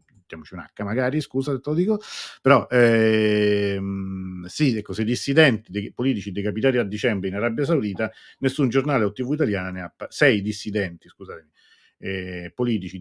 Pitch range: 95-125 Hz